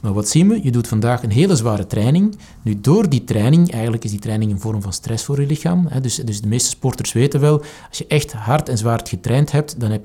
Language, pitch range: Dutch, 110-145 Hz